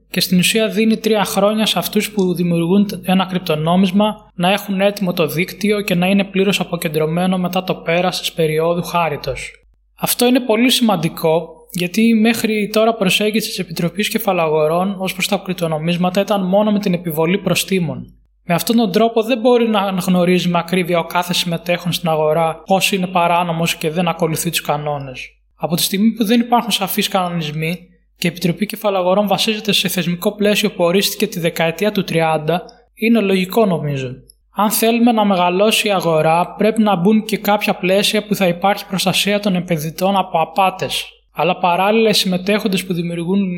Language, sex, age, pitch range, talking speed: Greek, male, 20-39, 170-205 Hz, 170 wpm